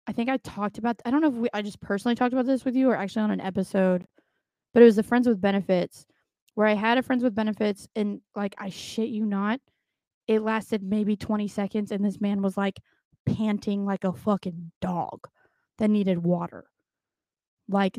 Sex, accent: female, American